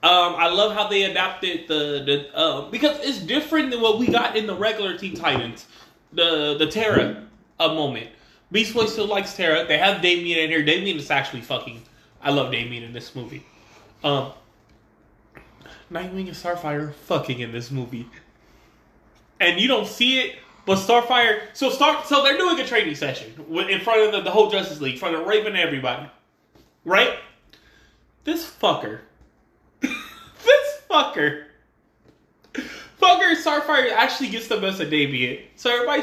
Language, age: English, 20-39